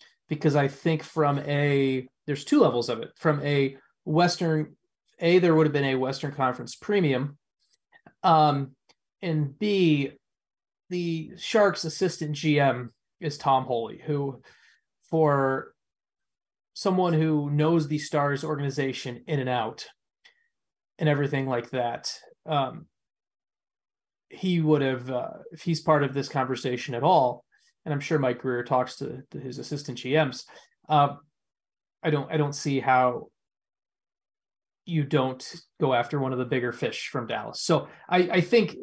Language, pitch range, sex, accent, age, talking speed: English, 135-170 Hz, male, American, 30-49, 145 wpm